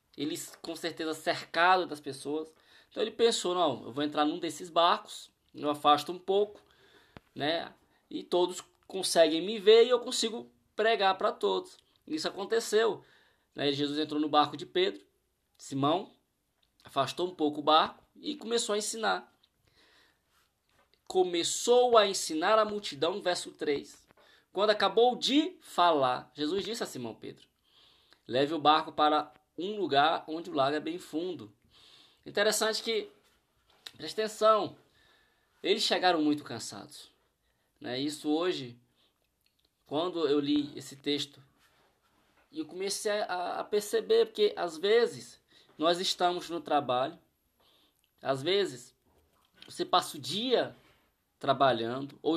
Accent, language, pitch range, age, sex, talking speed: Brazilian, Portuguese, 150-235 Hz, 20-39, male, 130 wpm